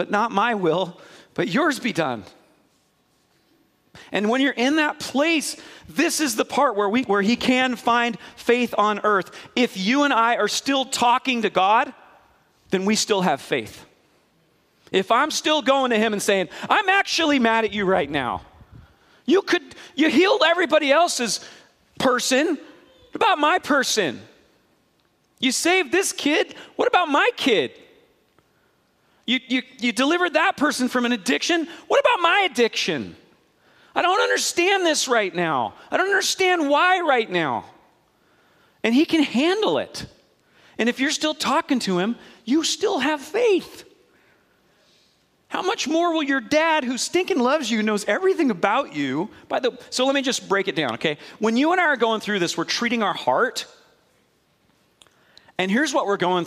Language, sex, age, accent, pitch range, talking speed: English, male, 40-59, American, 215-320 Hz, 165 wpm